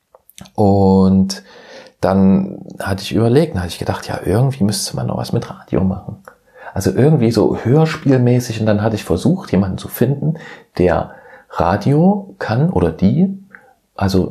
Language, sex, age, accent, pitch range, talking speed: German, male, 40-59, German, 95-110 Hz, 150 wpm